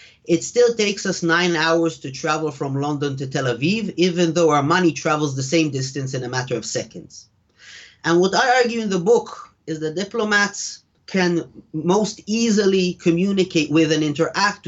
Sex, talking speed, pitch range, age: male, 175 wpm, 150-185 Hz, 30-49